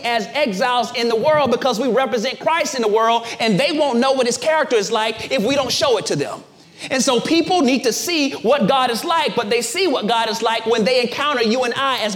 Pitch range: 225-275 Hz